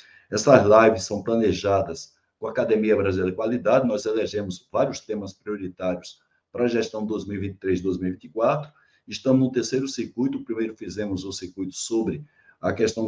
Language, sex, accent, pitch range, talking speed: Portuguese, male, Brazilian, 105-135 Hz, 145 wpm